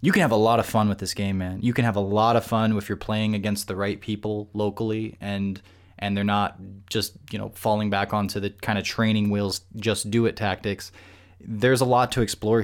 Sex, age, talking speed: male, 20-39, 235 wpm